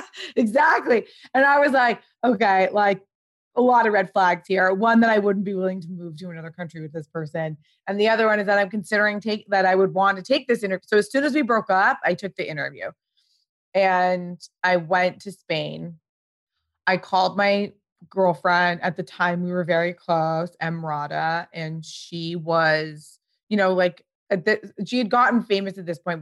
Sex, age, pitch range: female, 20-39, 160-195 Hz